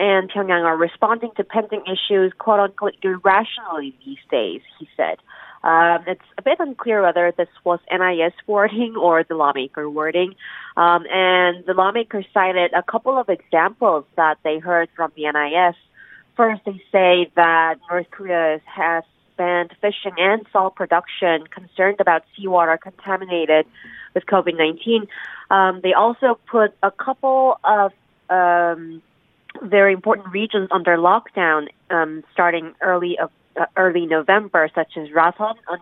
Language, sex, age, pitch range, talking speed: English, female, 30-49, 165-200 Hz, 140 wpm